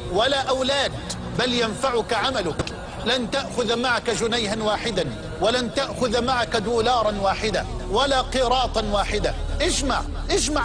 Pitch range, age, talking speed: 225-260 Hz, 50-69, 115 wpm